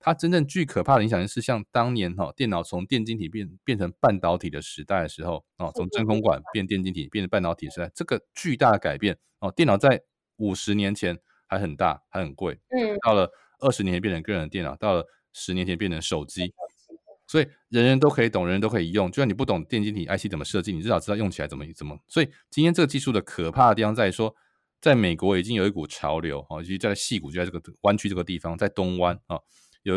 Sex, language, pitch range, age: male, Chinese, 90-115 Hz, 20-39